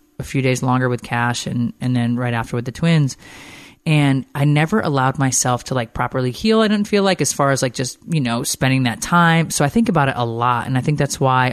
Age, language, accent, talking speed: 30-49, English, American, 255 wpm